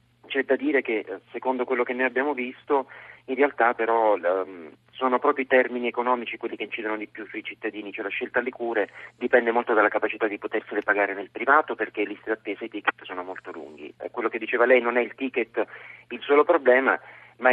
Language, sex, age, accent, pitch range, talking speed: Italian, male, 40-59, native, 115-130 Hz, 205 wpm